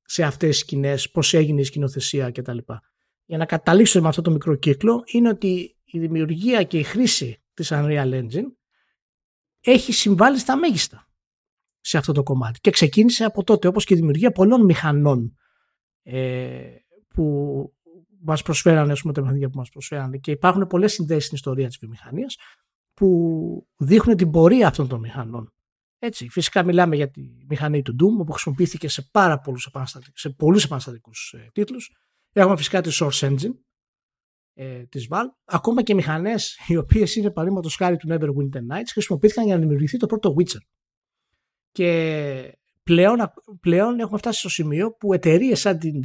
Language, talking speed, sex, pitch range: Greek, 160 wpm, male, 140-210 Hz